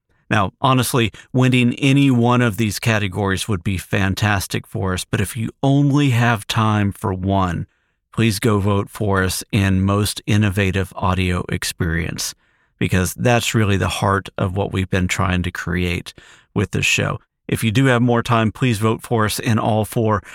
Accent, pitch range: American, 100-120 Hz